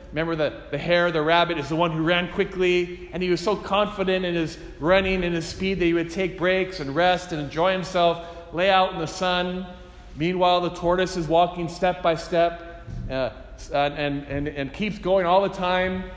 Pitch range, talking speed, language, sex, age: 155-190 Hz, 205 wpm, English, male, 40-59